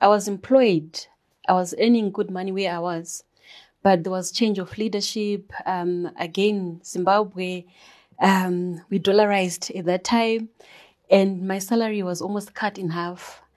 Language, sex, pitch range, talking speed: English, female, 175-205 Hz, 150 wpm